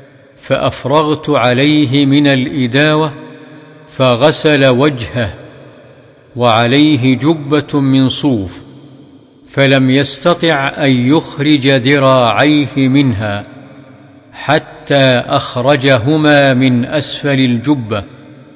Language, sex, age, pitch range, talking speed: Arabic, male, 50-69, 125-145 Hz, 70 wpm